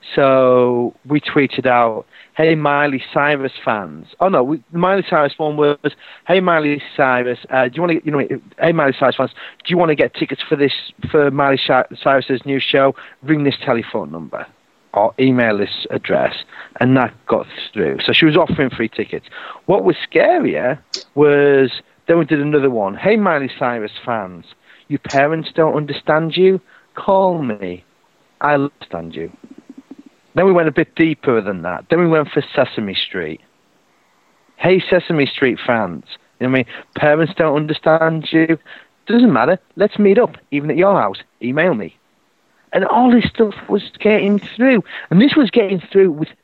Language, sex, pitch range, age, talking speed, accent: English, male, 135-175 Hz, 40-59, 175 wpm, British